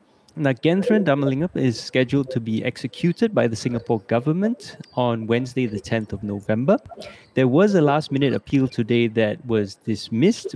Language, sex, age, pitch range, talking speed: English, male, 20-39, 115-140 Hz, 155 wpm